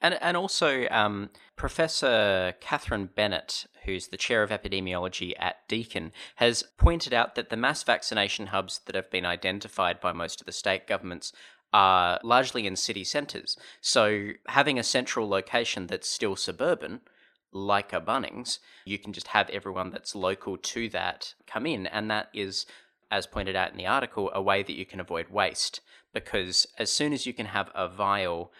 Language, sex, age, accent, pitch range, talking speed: English, male, 20-39, Australian, 95-120 Hz, 175 wpm